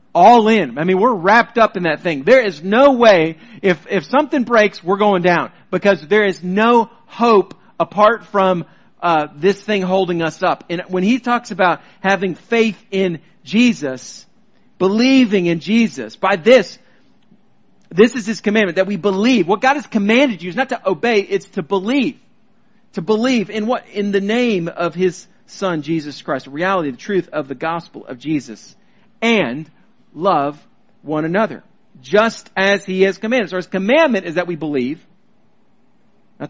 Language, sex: English, male